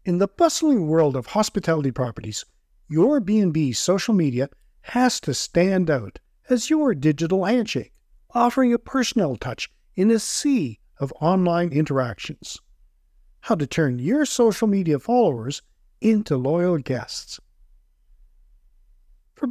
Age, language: 50-69, English